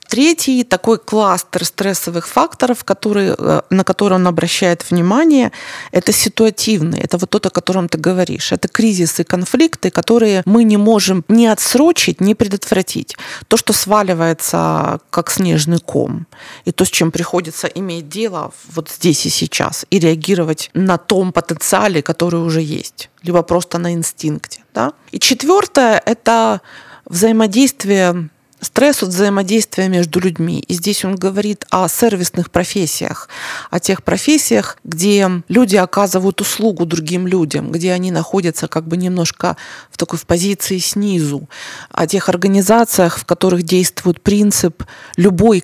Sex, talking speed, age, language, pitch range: female, 140 wpm, 20-39, Ukrainian, 175-205 Hz